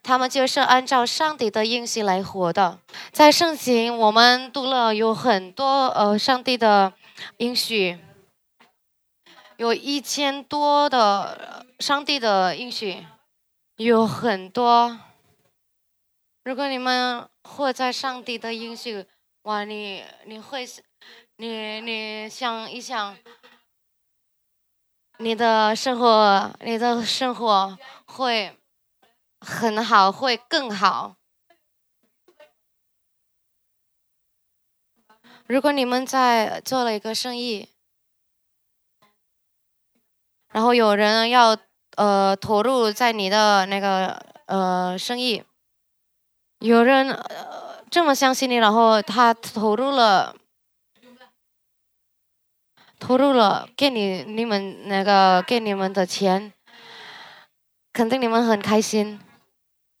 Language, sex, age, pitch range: English, female, 20-39, 205-255 Hz